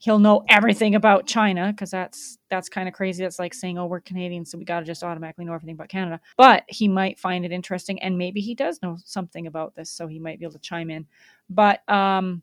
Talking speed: 245 wpm